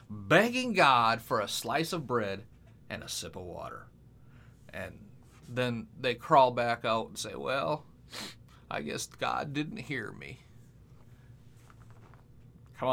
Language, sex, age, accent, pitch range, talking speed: English, male, 40-59, American, 115-150 Hz, 130 wpm